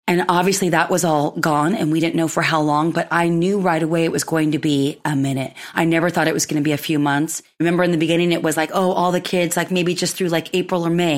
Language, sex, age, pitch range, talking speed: English, female, 30-49, 160-185 Hz, 295 wpm